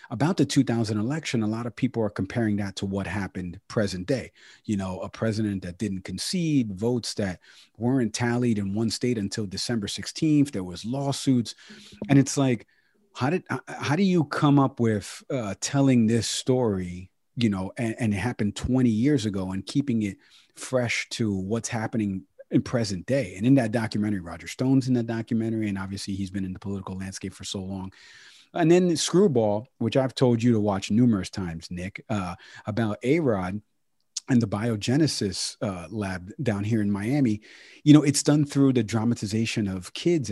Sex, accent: male, American